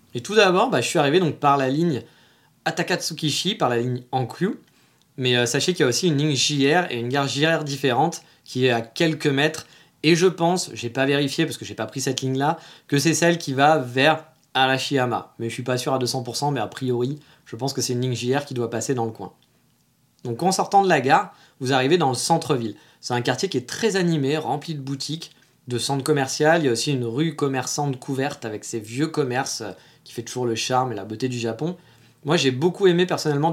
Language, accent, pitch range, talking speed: French, French, 125-165 Hz, 235 wpm